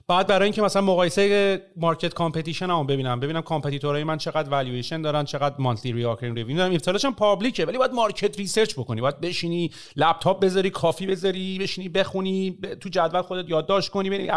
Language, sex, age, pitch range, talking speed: Persian, male, 40-59, 150-210 Hz, 175 wpm